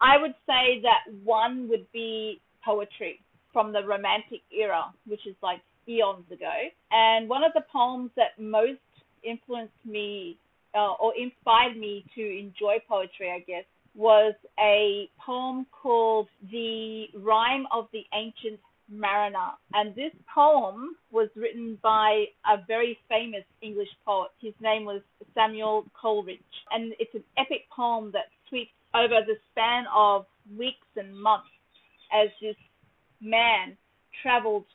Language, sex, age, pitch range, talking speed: English, female, 40-59, 210-235 Hz, 135 wpm